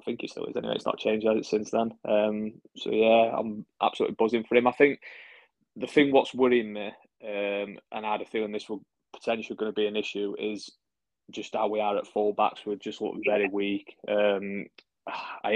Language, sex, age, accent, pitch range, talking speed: English, male, 20-39, British, 100-110 Hz, 210 wpm